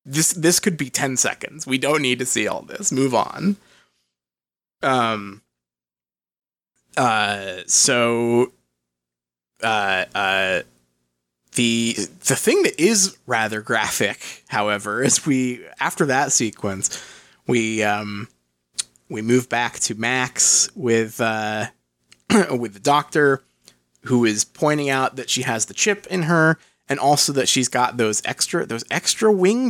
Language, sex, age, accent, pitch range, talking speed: English, male, 20-39, American, 95-150 Hz, 135 wpm